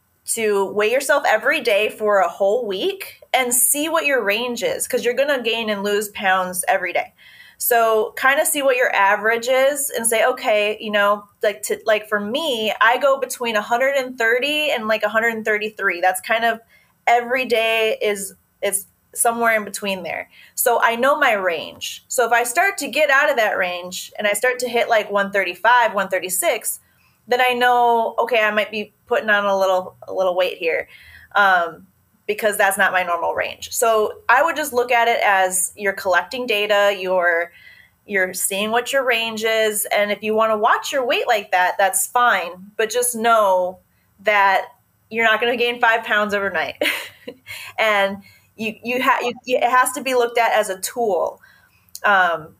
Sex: female